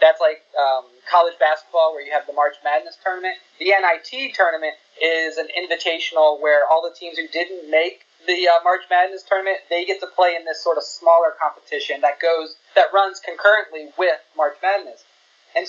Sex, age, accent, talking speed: male, 30-49, American, 185 wpm